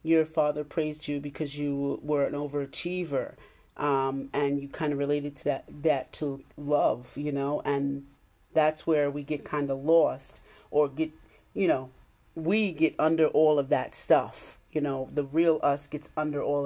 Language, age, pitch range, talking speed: English, 30-49, 140-155 Hz, 175 wpm